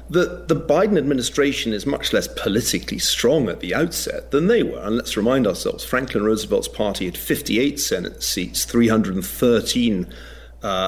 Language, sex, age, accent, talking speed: English, male, 40-59, British, 150 wpm